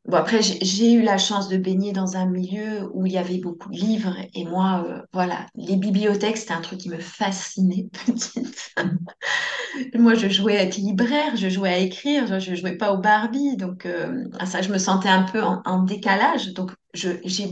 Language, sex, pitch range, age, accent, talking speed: French, female, 185-210 Hz, 30-49, French, 215 wpm